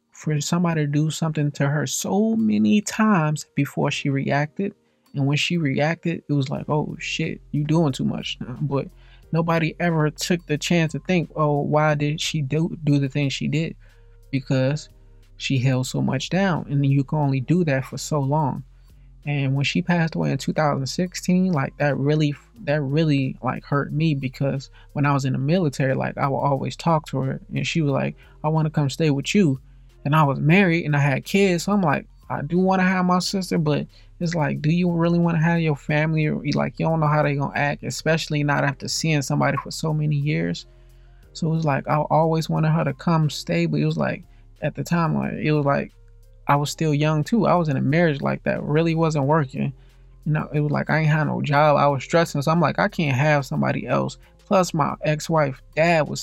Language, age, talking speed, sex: English, 20-39, 225 wpm, male